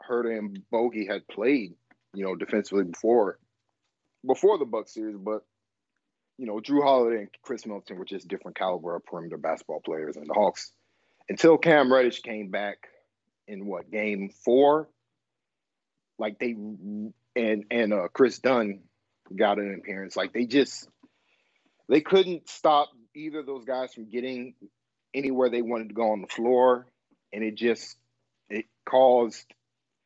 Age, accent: 40-59, American